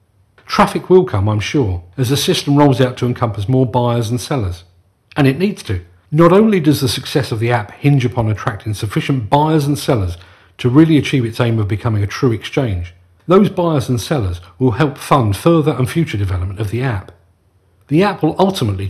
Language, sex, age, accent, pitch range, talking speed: English, male, 40-59, British, 105-150 Hz, 200 wpm